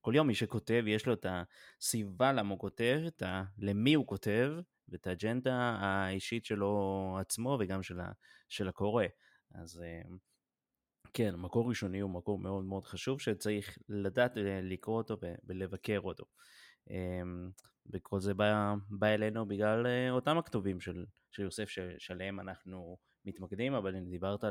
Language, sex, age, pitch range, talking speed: Hebrew, male, 20-39, 95-110 Hz, 135 wpm